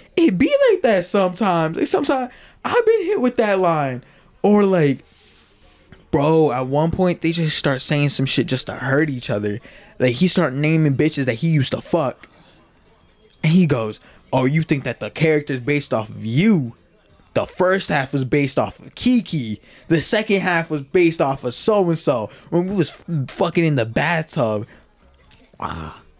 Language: English